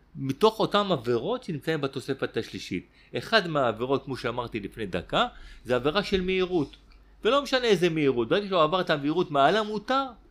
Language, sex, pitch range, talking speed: Hebrew, male, 110-160 Hz, 155 wpm